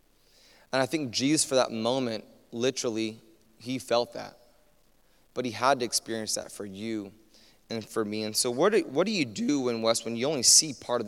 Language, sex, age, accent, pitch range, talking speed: English, male, 20-39, American, 115-185 Hz, 205 wpm